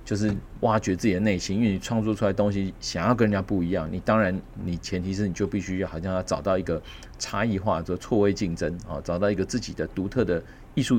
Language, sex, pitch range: Chinese, male, 90-125 Hz